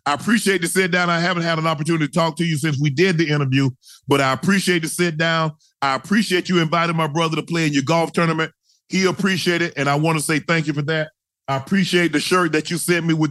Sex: male